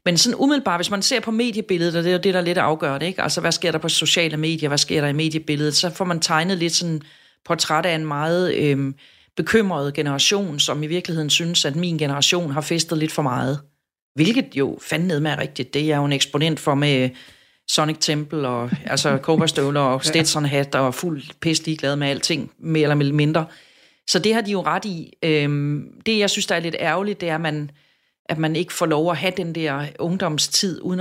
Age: 30-49